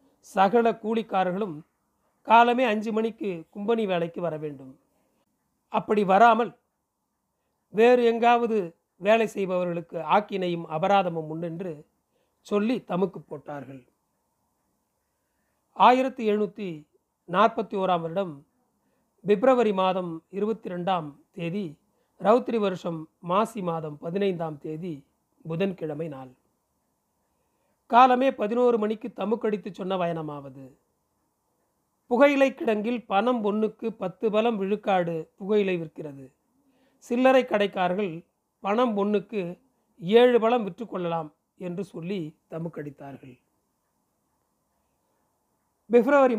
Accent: native